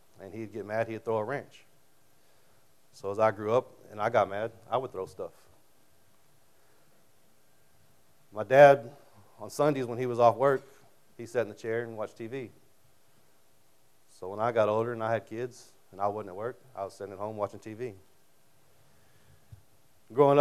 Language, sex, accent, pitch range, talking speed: English, male, American, 105-130 Hz, 175 wpm